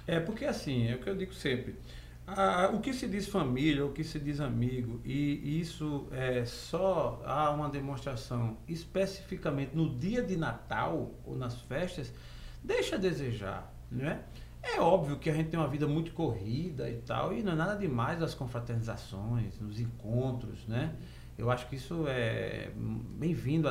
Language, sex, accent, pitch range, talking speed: Portuguese, male, Brazilian, 120-170 Hz, 170 wpm